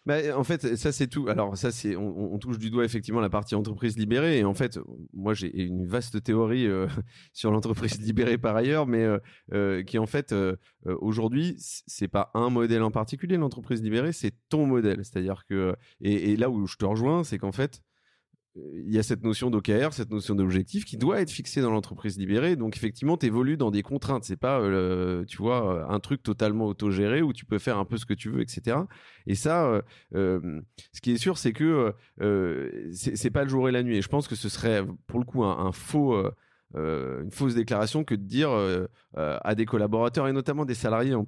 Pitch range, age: 100-135 Hz, 30-49